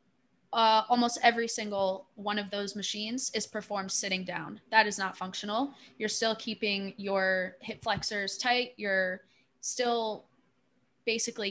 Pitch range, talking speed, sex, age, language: 195-230 Hz, 135 wpm, female, 20-39, English